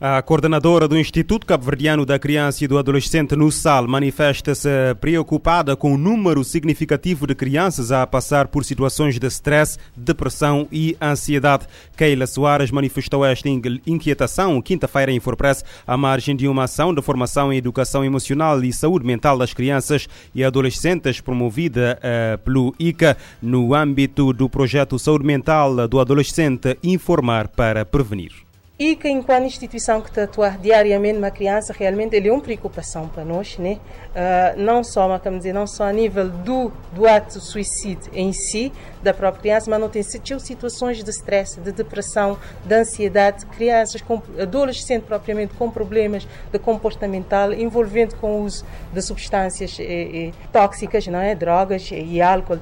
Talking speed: 155 wpm